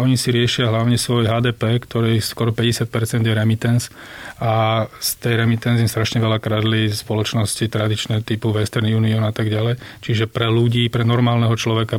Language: Slovak